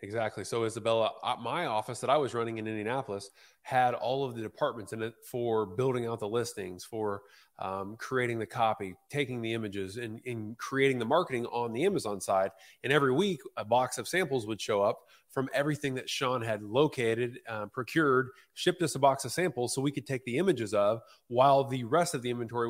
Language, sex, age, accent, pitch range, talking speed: English, male, 30-49, American, 115-145 Hz, 205 wpm